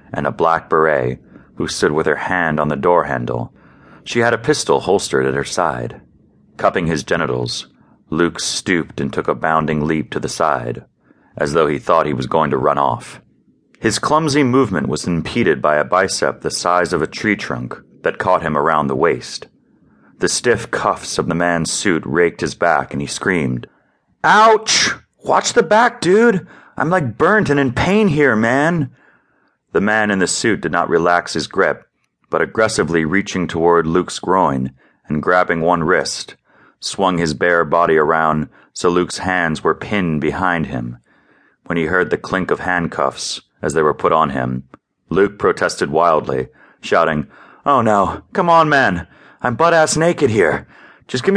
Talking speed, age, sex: 175 wpm, 30-49, male